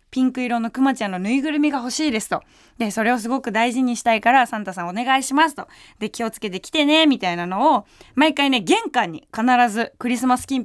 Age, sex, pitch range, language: 20-39, female, 210-310 Hz, Japanese